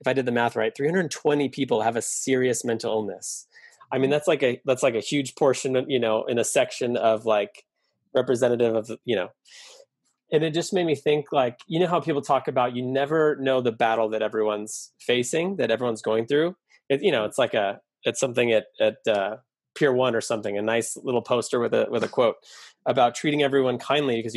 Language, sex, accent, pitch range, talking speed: English, male, American, 110-145 Hz, 220 wpm